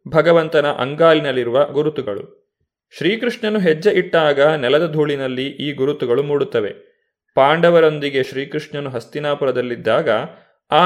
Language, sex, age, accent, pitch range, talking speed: Kannada, male, 30-49, native, 140-180 Hz, 85 wpm